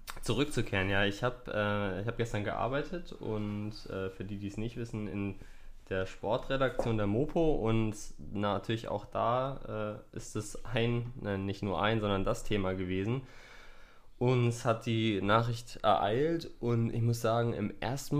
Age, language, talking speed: 20-39, German, 160 wpm